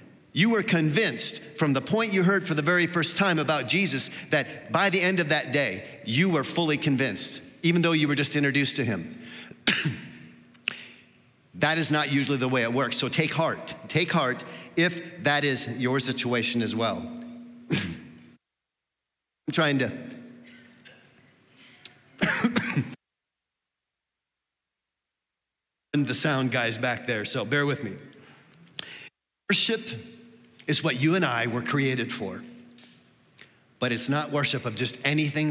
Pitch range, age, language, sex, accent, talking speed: 125-175 Hz, 50-69, English, male, American, 140 wpm